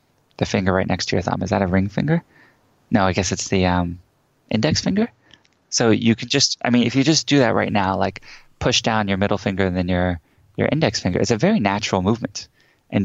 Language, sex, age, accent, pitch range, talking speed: English, male, 20-39, American, 90-110 Hz, 235 wpm